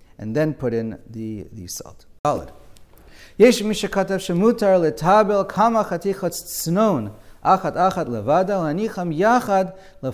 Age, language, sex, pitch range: 40-59, English, male, 120-175 Hz